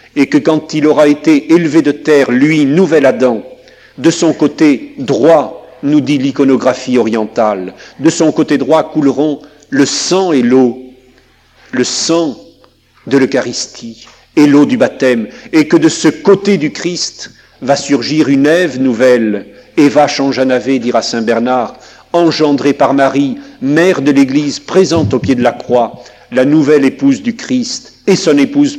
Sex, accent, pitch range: male, French, 125-160 Hz